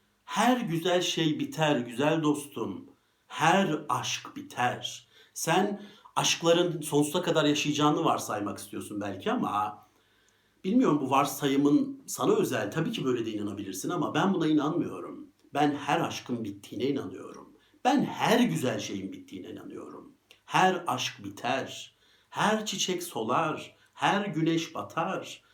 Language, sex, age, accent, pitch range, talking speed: Turkish, male, 60-79, native, 145-240 Hz, 120 wpm